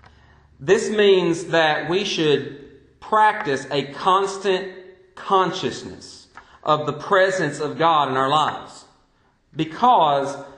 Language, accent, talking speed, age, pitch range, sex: English, American, 100 wpm, 40-59, 140-185 Hz, male